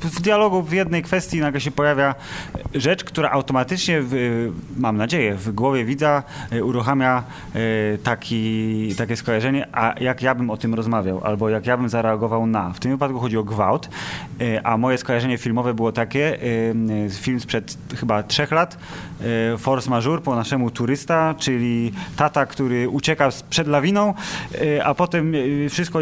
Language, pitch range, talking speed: Polish, 115-140 Hz, 145 wpm